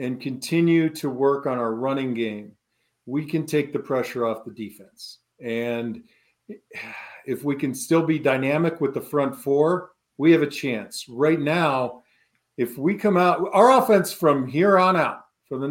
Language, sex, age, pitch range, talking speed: English, male, 50-69, 125-175 Hz, 170 wpm